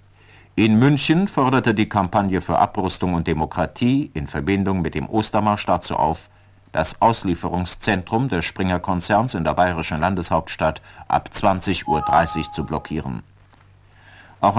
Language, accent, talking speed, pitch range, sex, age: German, German, 125 wpm, 85-110 Hz, male, 50-69